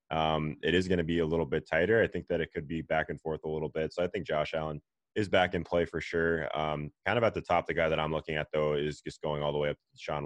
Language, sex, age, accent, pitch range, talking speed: English, male, 20-39, American, 75-80 Hz, 320 wpm